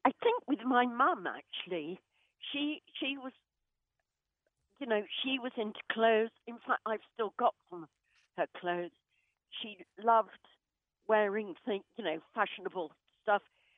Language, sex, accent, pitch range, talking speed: English, female, British, 200-240 Hz, 140 wpm